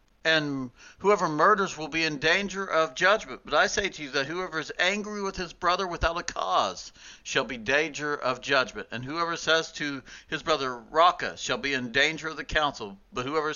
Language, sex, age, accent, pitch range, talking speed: English, male, 60-79, American, 120-160 Hz, 205 wpm